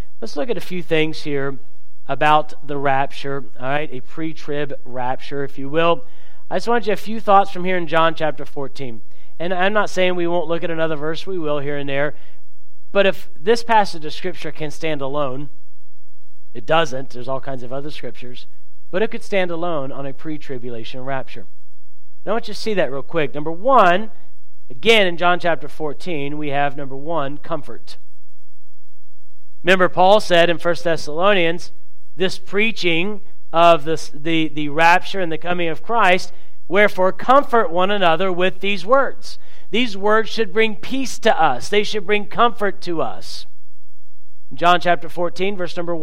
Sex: male